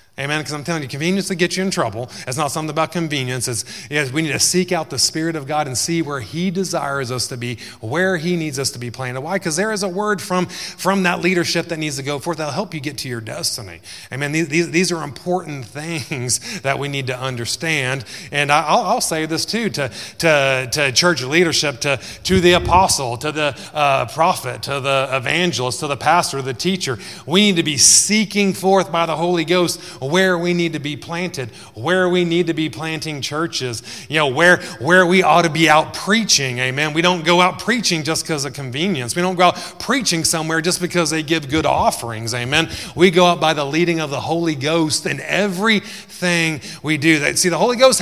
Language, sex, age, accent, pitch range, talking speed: English, male, 30-49, American, 135-180 Hz, 225 wpm